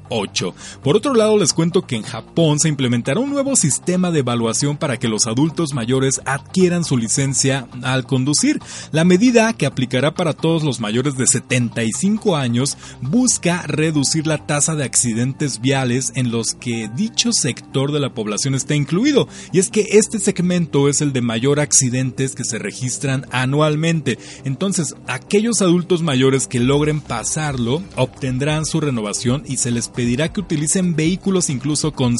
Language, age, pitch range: Spanish, 30-49, 125-170 Hz